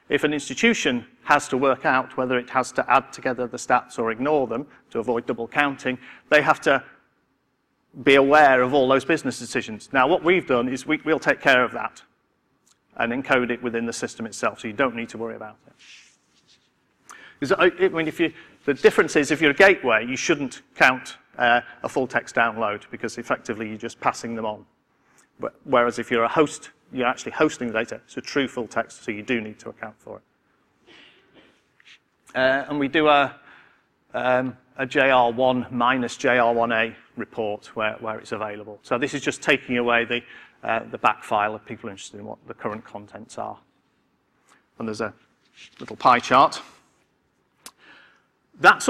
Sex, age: male, 40-59